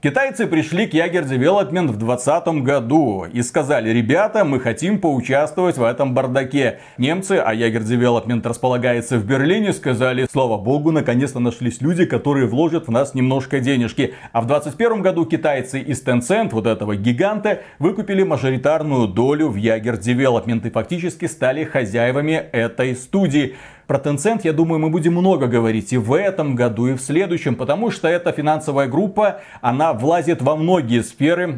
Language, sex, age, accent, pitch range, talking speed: Russian, male, 30-49, native, 125-165 Hz, 160 wpm